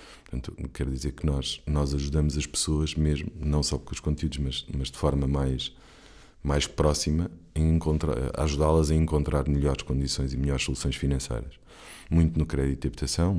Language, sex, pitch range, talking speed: Portuguese, male, 70-75 Hz, 165 wpm